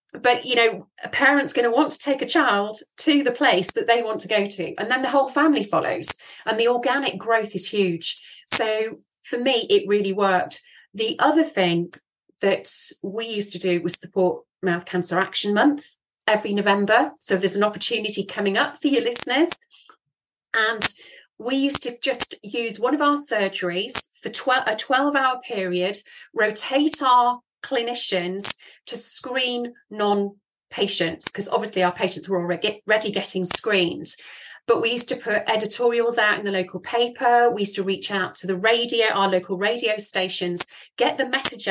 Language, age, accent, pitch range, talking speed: English, 30-49, British, 195-255 Hz, 175 wpm